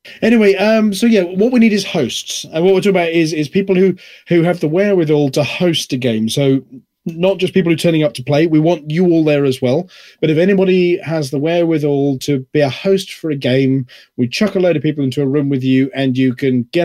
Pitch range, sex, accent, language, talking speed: 130-160 Hz, male, British, English, 255 wpm